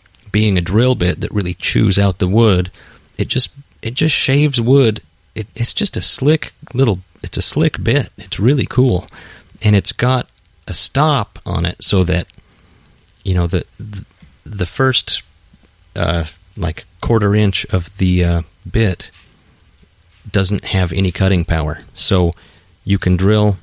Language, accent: English, American